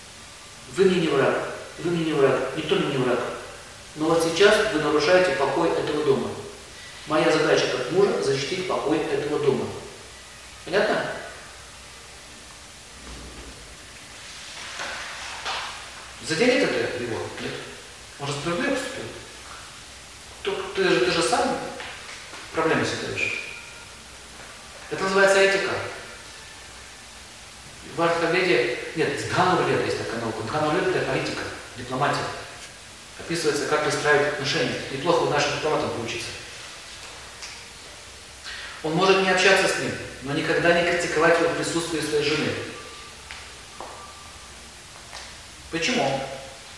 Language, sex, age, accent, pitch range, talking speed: Russian, male, 40-59, native, 115-180 Hz, 100 wpm